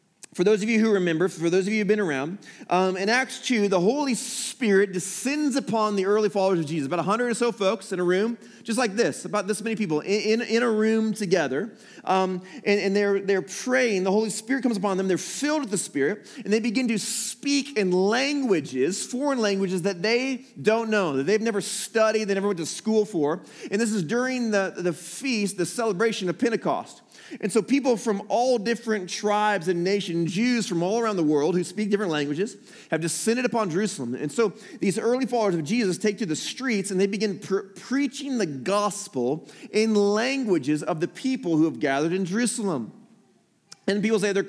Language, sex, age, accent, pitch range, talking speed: English, male, 30-49, American, 180-230 Hz, 205 wpm